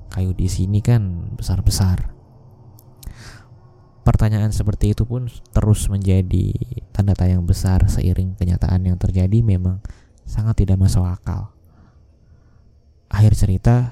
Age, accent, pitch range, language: 20-39, native, 95-110 Hz, Indonesian